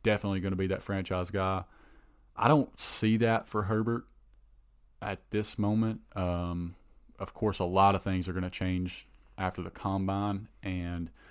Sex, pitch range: male, 90-105 Hz